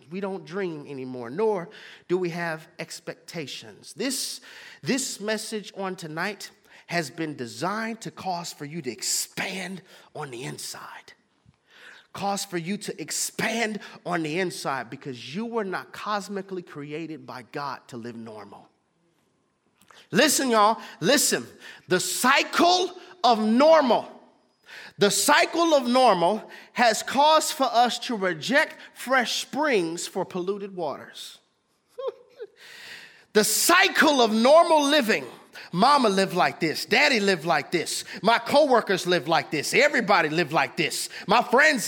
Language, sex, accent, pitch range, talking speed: English, male, American, 170-235 Hz, 130 wpm